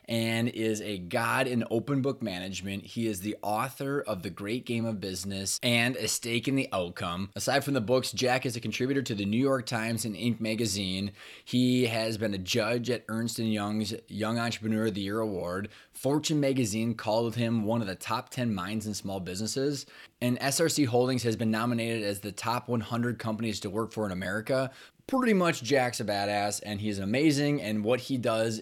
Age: 20-39